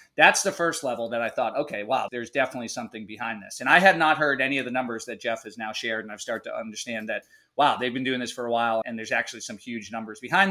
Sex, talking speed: male, 280 wpm